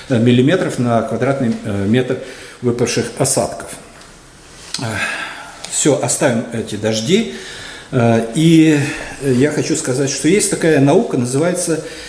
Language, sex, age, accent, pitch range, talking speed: Russian, male, 50-69, native, 125-160 Hz, 95 wpm